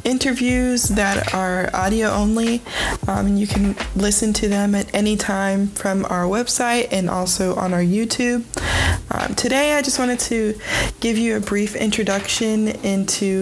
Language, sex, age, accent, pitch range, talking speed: English, female, 20-39, American, 190-220 Hz, 150 wpm